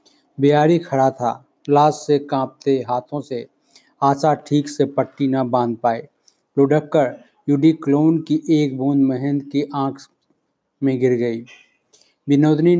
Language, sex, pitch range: Hindi, male, 130-145 Hz